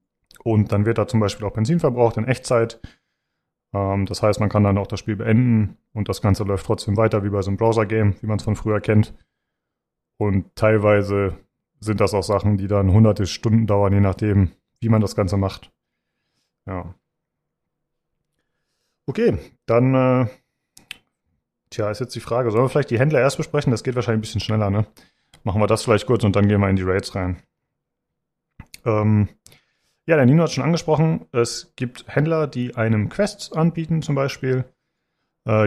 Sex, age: male, 30-49